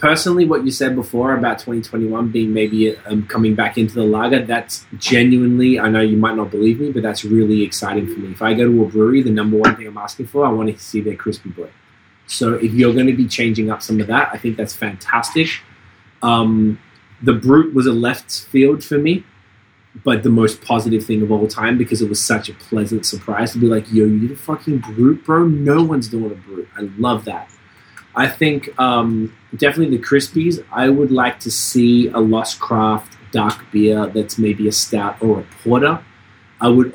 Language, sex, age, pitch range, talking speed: English, male, 20-39, 110-125 Hz, 215 wpm